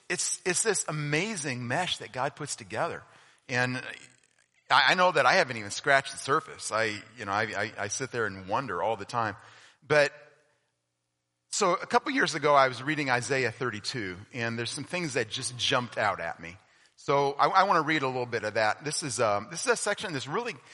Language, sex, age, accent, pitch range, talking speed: English, male, 40-59, American, 105-150 Hz, 215 wpm